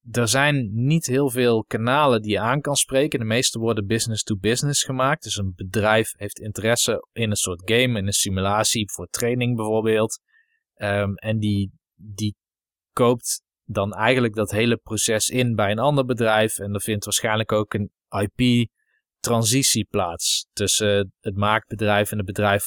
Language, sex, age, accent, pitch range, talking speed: Dutch, male, 20-39, Dutch, 105-120 Hz, 160 wpm